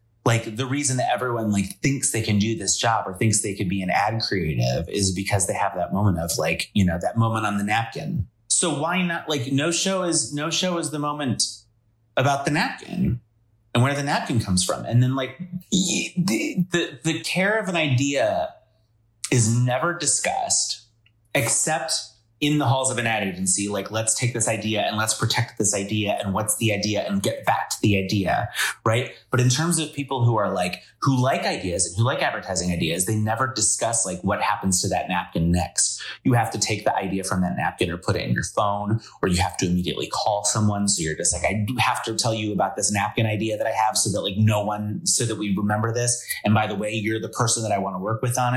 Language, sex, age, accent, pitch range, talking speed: English, male, 30-49, American, 105-135 Hz, 230 wpm